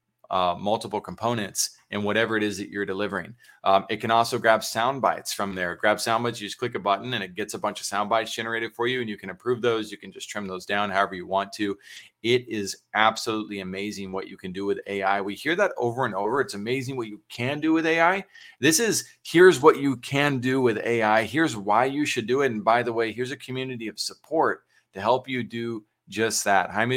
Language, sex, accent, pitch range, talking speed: English, male, American, 105-125 Hz, 240 wpm